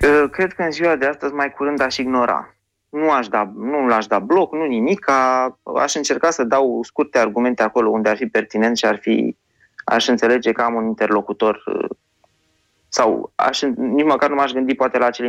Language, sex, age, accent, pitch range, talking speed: Romanian, male, 20-39, native, 105-135 Hz, 190 wpm